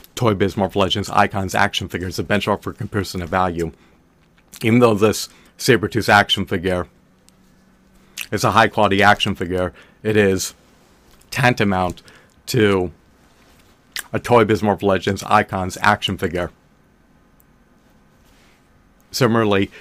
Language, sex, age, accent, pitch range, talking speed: English, male, 30-49, American, 95-110 Hz, 110 wpm